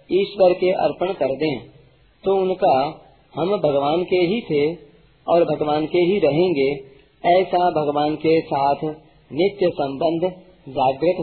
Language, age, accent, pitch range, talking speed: Hindi, 40-59, native, 140-180 Hz, 130 wpm